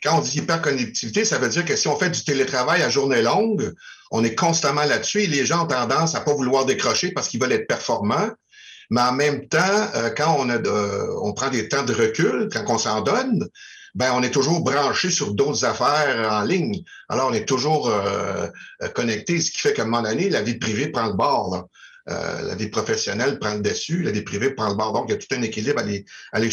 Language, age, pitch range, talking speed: French, 50-69, 135-195 Hz, 235 wpm